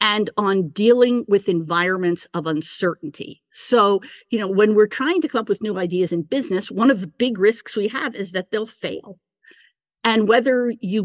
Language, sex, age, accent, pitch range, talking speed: English, female, 50-69, American, 180-230 Hz, 190 wpm